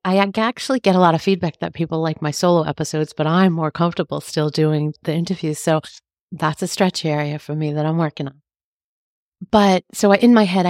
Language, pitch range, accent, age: English, 155-190 Hz, American, 40-59